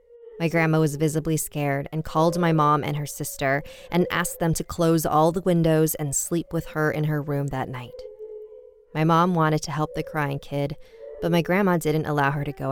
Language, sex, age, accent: English, female, 20-39, American